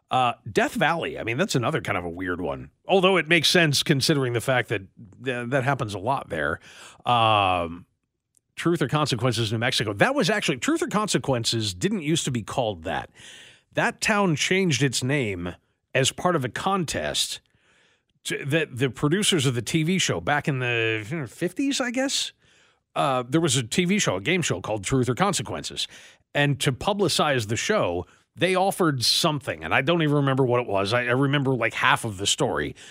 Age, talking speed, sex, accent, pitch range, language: 50-69, 185 wpm, male, American, 120-170 Hz, English